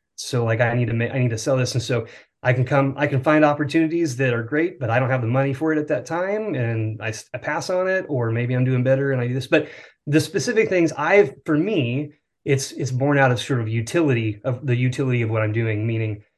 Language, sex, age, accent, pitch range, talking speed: English, male, 30-49, American, 120-145 Hz, 265 wpm